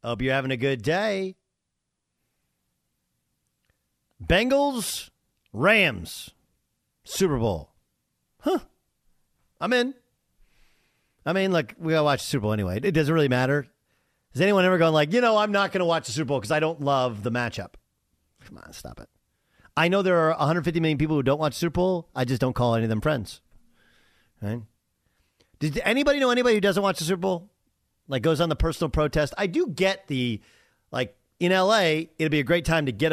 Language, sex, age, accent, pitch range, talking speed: English, male, 40-59, American, 120-170 Hz, 190 wpm